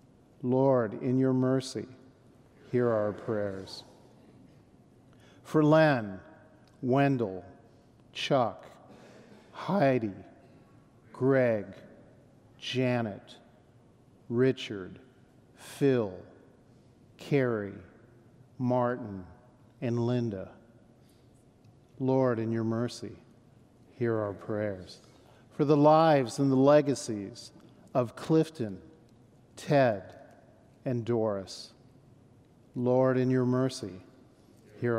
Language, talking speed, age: English, 75 wpm, 50-69